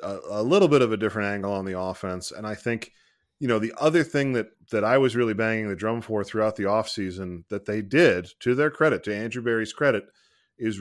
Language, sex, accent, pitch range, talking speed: English, male, American, 95-120 Hz, 235 wpm